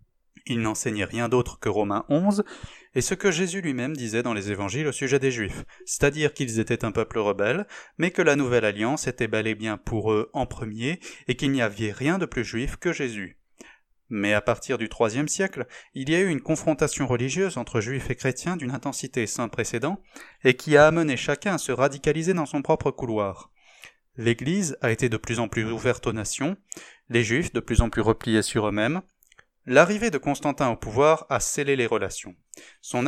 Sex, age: male, 20-39